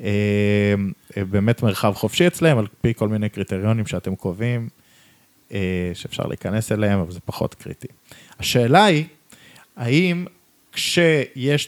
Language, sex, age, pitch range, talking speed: Hebrew, male, 20-39, 110-145 Hz, 115 wpm